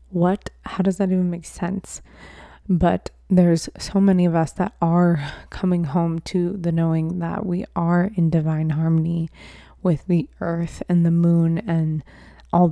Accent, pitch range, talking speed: American, 165-180 Hz, 160 wpm